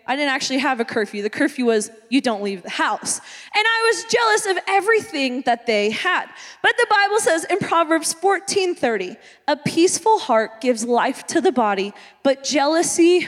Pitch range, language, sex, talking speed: 255-370 Hz, English, female, 180 wpm